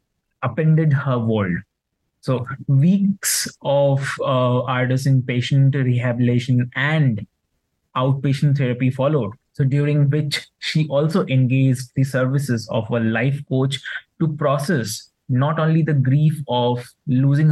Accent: Indian